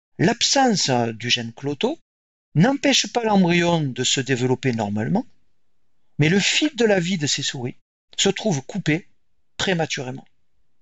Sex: male